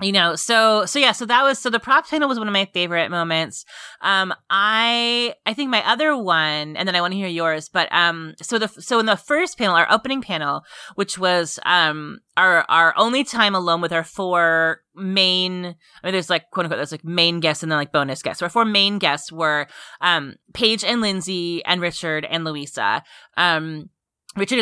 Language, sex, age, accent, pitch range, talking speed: English, female, 20-39, American, 165-210 Hz, 210 wpm